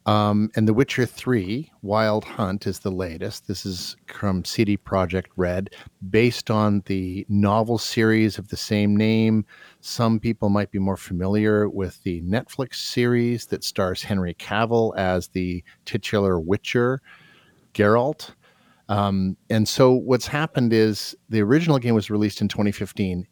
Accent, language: American, English